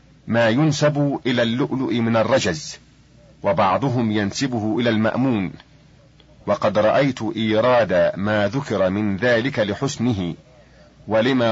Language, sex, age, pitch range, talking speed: Arabic, male, 40-59, 105-130 Hz, 100 wpm